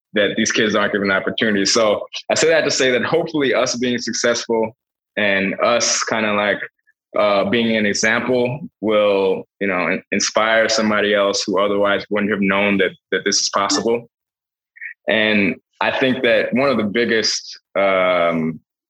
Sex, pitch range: male, 100-115 Hz